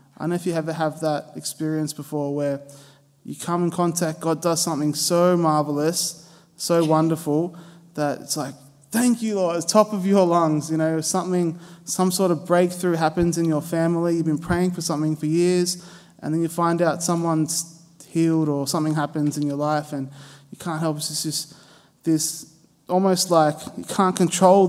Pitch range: 155-175 Hz